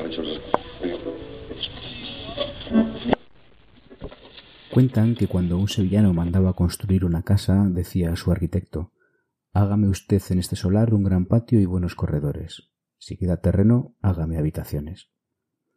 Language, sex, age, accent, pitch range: Spanish, male, 30-49, Spanish, 85-105 Hz